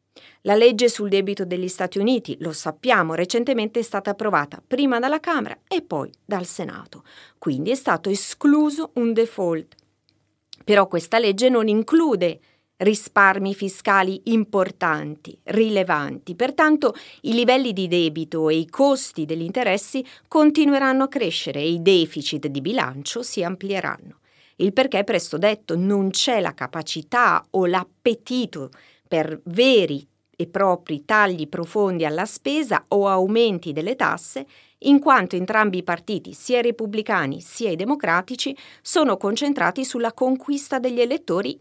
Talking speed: 135 wpm